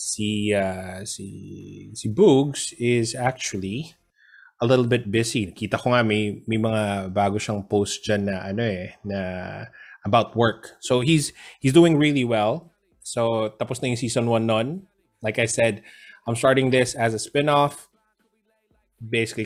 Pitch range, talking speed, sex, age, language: 105-125 Hz, 135 wpm, male, 20-39, Filipino